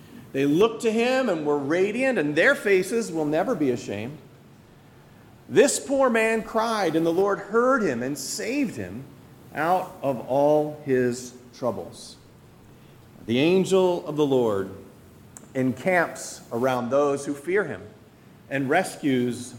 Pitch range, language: 120-180 Hz, English